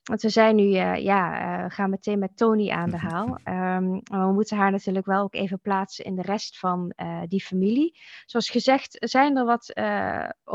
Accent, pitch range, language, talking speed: Dutch, 180-215 Hz, Dutch, 210 wpm